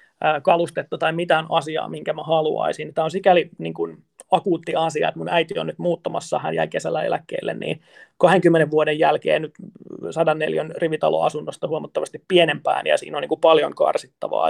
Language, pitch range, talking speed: Finnish, 155-200 Hz, 155 wpm